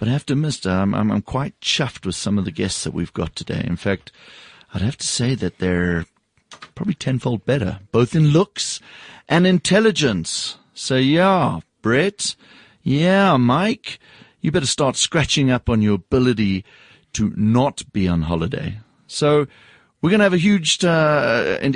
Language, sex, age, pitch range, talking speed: English, male, 40-59, 95-145 Hz, 170 wpm